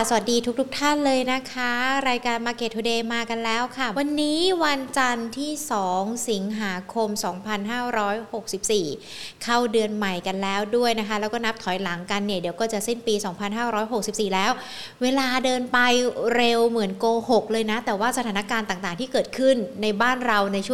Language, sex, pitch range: Thai, female, 205-245 Hz